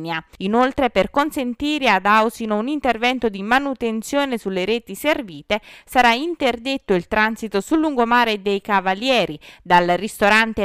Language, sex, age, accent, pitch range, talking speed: Italian, female, 20-39, native, 195-260 Hz, 125 wpm